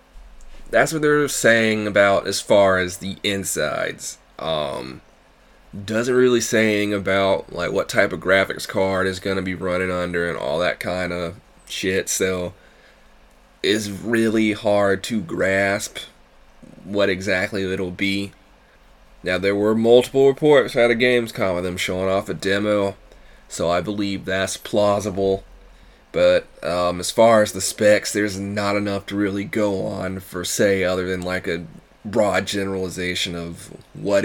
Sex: male